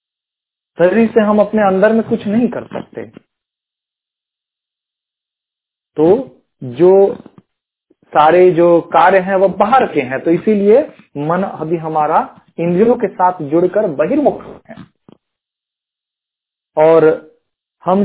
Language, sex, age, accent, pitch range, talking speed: Hindi, male, 40-59, native, 160-210 Hz, 105 wpm